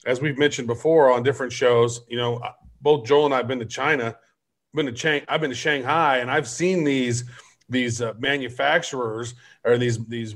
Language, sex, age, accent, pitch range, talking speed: English, male, 40-59, American, 135-175 Hz, 205 wpm